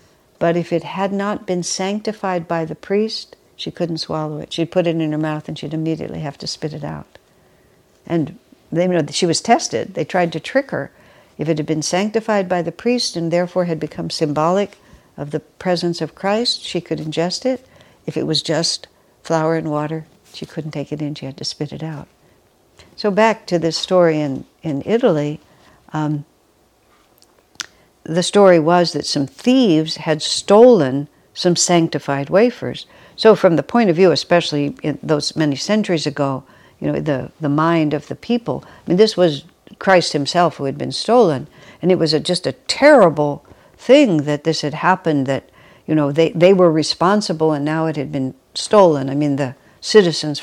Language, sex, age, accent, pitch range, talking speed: English, female, 60-79, American, 150-185 Hz, 190 wpm